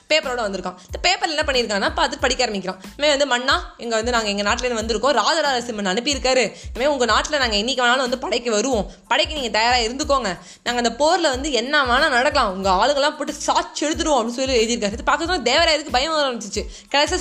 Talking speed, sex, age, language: 190 wpm, female, 20-39, Tamil